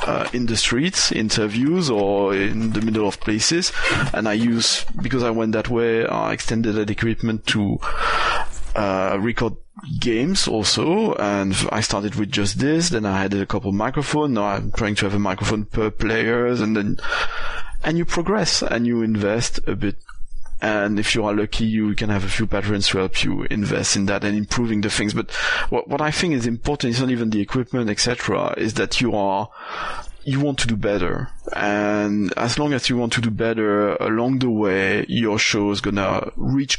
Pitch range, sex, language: 100-120 Hz, male, English